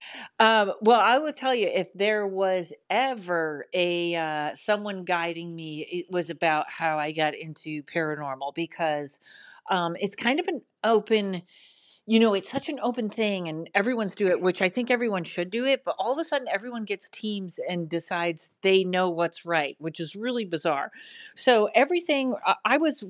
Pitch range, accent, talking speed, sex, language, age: 170-220 Hz, American, 180 wpm, female, English, 40-59